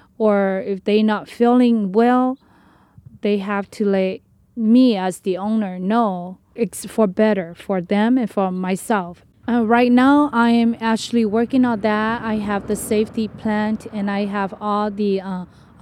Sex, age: female, 20-39